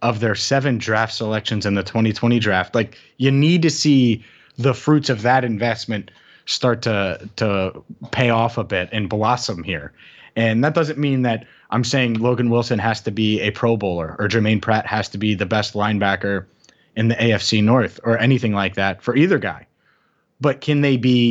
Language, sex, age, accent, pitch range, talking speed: English, male, 30-49, American, 110-135 Hz, 190 wpm